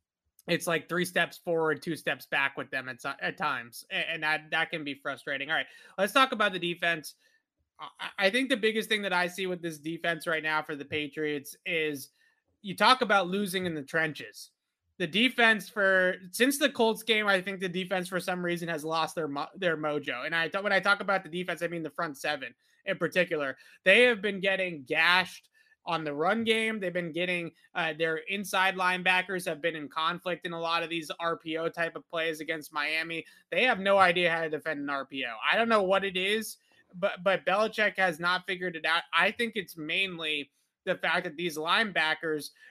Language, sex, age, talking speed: English, male, 20-39, 210 wpm